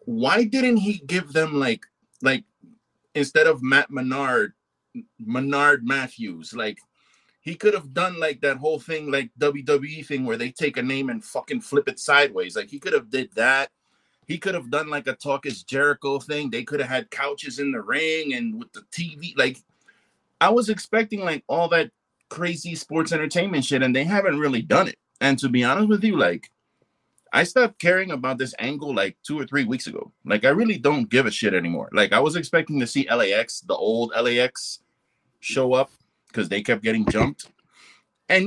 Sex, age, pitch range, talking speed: male, 30-49, 130-185 Hz, 195 wpm